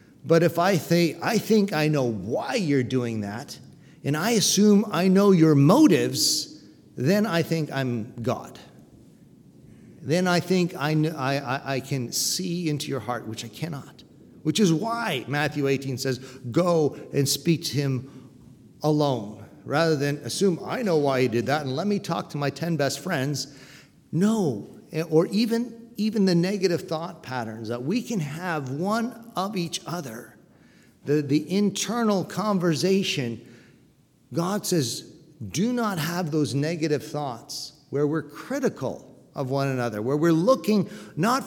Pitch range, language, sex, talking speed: 135-190 Hz, English, male, 155 wpm